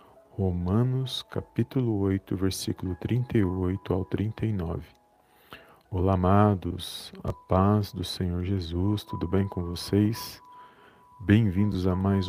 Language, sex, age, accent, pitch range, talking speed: Portuguese, male, 40-59, Brazilian, 90-110 Hz, 105 wpm